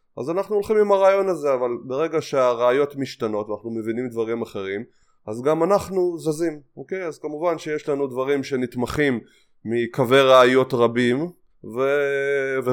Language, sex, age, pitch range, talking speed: Hebrew, male, 20-39, 115-160 Hz, 140 wpm